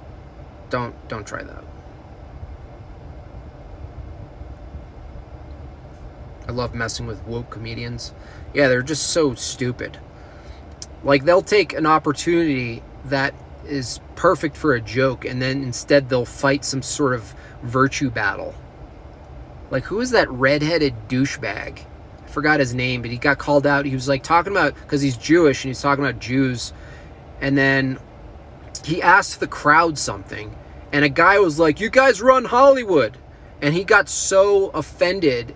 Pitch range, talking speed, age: 115-155 Hz, 140 wpm, 30-49